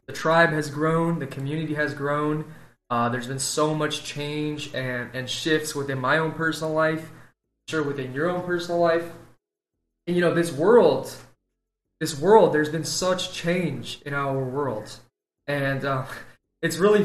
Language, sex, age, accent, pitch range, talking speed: English, male, 20-39, American, 135-155 Hz, 160 wpm